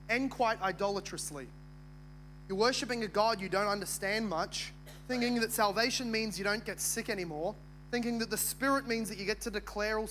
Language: English